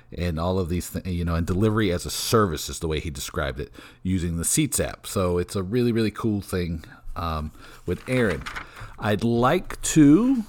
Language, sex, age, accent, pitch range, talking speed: English, male, 50-69, American, 90-115 Hz, 200 wpm